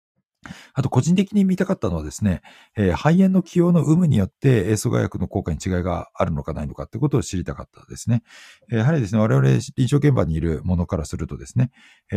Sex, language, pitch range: male, Japanese, 85-125 Hz